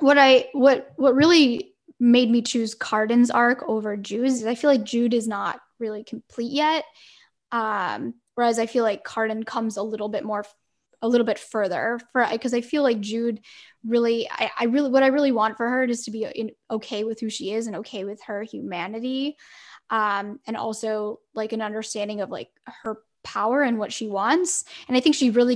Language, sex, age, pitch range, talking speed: English, female, 10-29, 215-260 Hz, 200 wpm